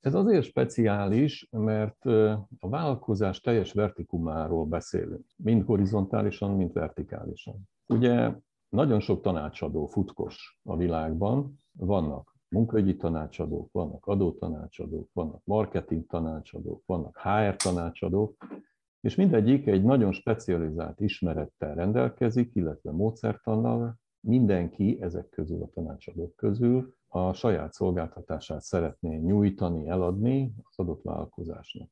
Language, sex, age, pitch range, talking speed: English, male, 50-69, 85-110 Hz, 105 wpm